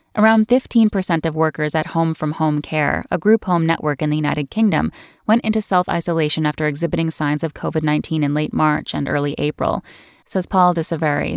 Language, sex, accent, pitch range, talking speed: English, female, American, 155-185 Hz, 180 wpm